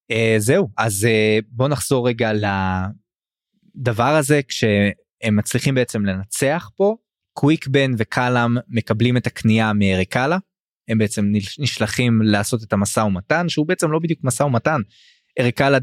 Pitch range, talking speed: 115-160 Hz, 135 wpm